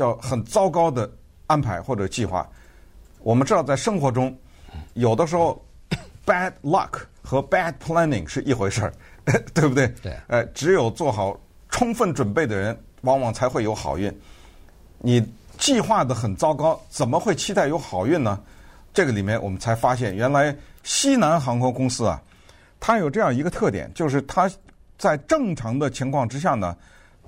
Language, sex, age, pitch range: Chinese, male, 50-69, 95-145 Hz